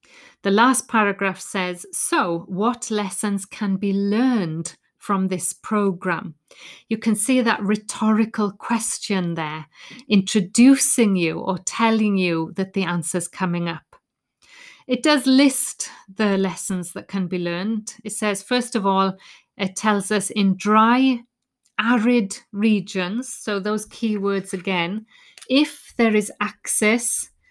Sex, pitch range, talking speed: female, 190-230 Hz, 130 wpm